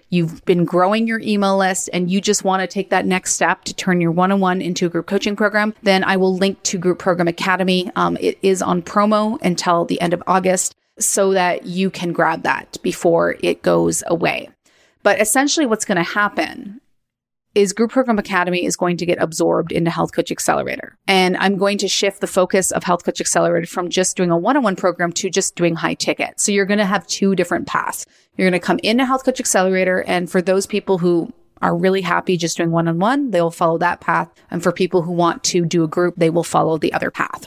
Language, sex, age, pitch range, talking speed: English, female, 30-49, 175-205 Hz, 225 wpm